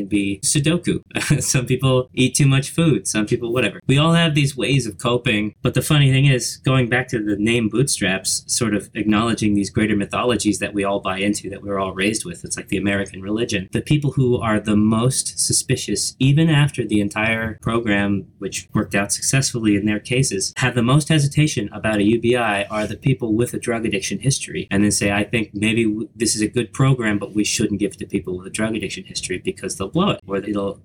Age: 30-49